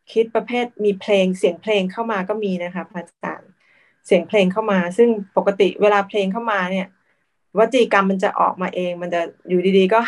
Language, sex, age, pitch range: Thai, female, 20-39, 180-205 Hz